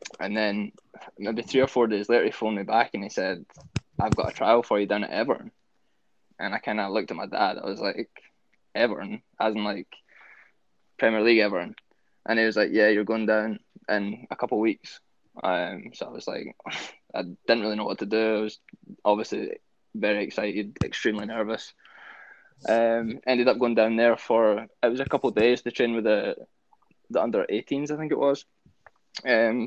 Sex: male